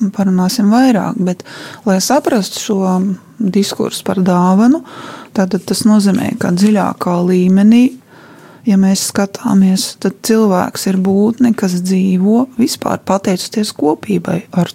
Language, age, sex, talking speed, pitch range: English, 20-39, female, 110 wpm, 185-225 Hz